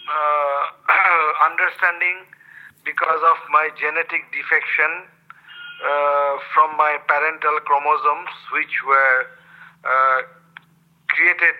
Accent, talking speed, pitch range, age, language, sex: Indian, 85 wpm, 145-165 Hz, 50-69, English, male